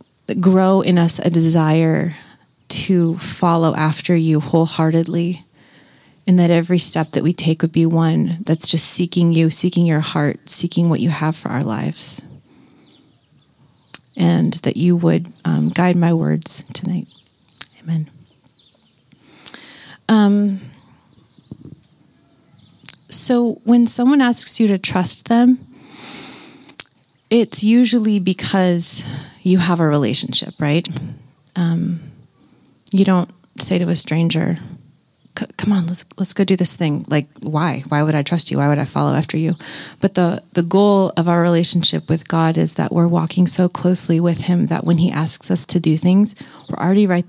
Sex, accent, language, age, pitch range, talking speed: female, American, English, 30-49, 160-185 Hz, 150 wpm